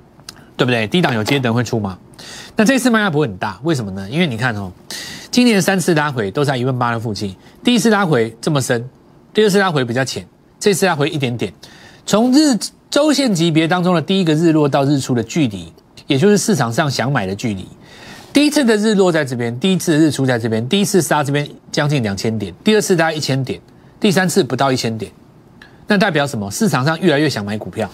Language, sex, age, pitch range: Chinese, male, 30-49, 120-180 Hz